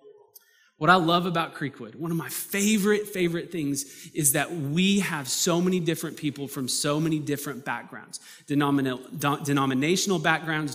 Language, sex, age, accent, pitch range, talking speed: English, male, 20-39, American, 130-165 Hz, 145 wpm